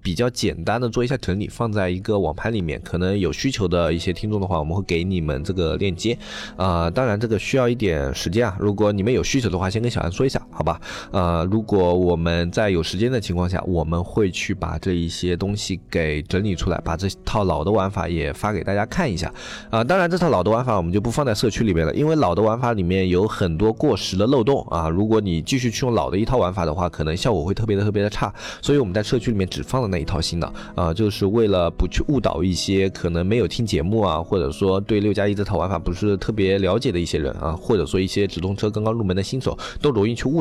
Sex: male